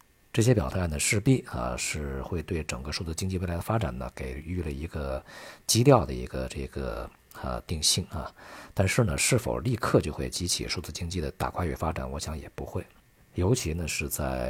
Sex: male